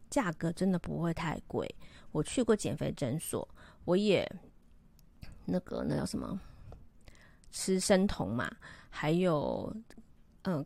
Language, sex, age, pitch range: Chinese, female, 30-49, 160-205 Hz